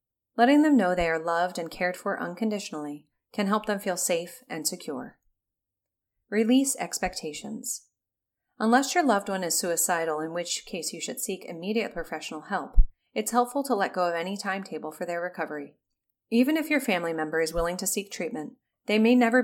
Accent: American